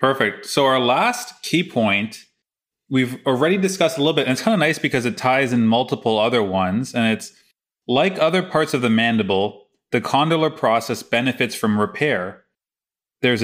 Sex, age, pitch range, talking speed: male, 30-49, 105-135 Hz, 175 wpm